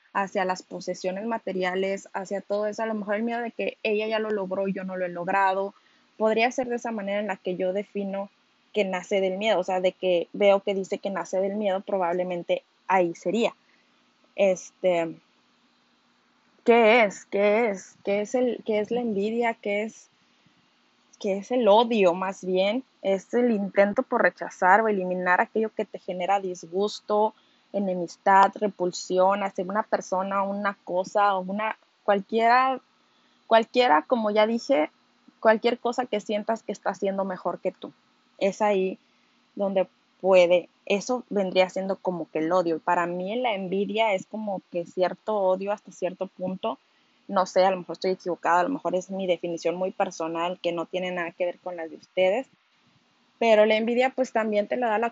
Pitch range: 185-220 Hz